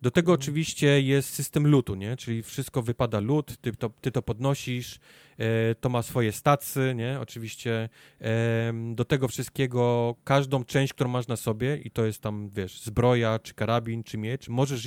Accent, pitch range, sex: native, 115-140 Hz, male